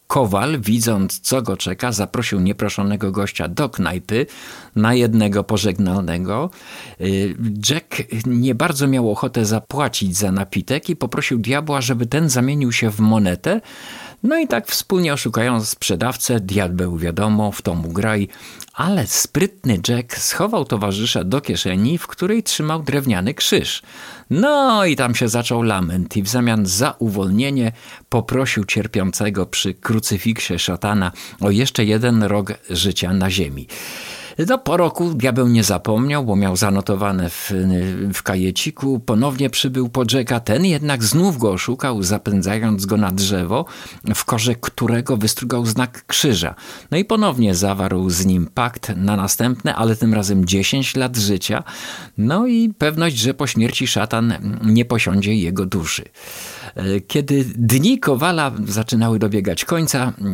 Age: 50-69